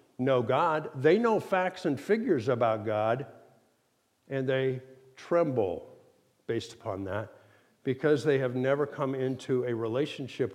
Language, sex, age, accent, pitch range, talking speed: English, male, 60-79, American, 130-180 Hz, 130 wpm